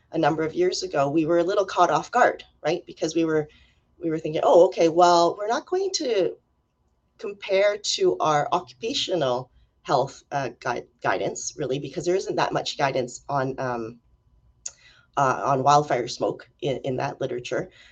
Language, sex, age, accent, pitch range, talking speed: English, female, 30-49, American, 145-180 Hz, 170 wpm